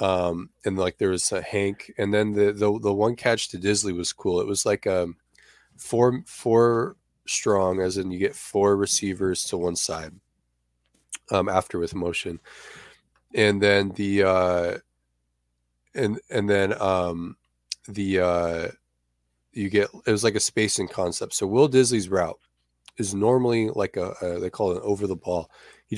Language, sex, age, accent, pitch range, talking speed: English, male, 20-39, American, 90-105 Hz, 170 wpm